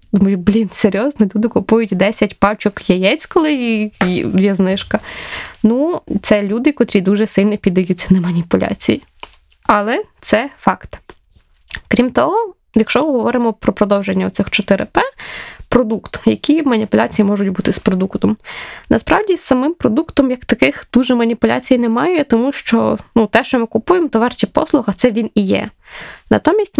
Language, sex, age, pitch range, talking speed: Ukrainian, female, 20-39, 200-255 Hz, 145 wpm